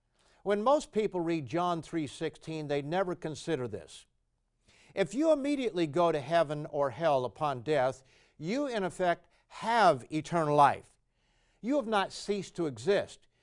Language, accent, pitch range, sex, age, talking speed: English, American, 135-180 Hz, male, 60-79, 145 wpm